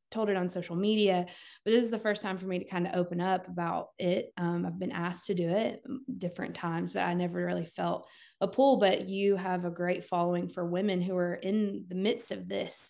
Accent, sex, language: American, female, English